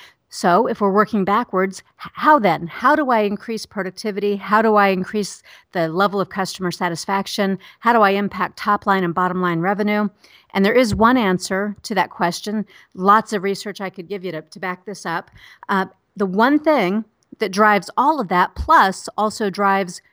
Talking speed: 190 wpm